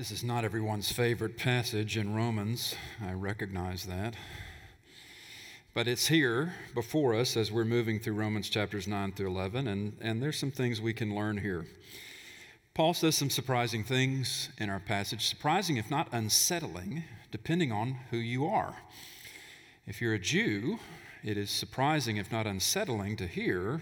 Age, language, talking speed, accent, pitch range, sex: 40-59, English, 160 wpm, American, 110-150 Hz, male